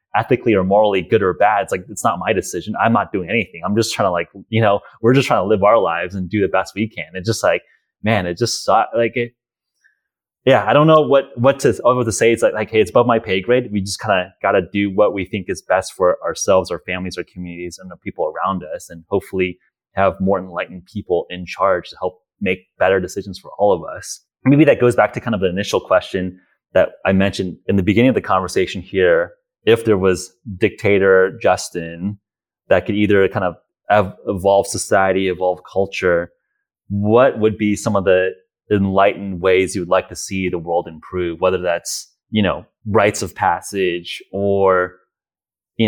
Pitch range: 95-110 Hz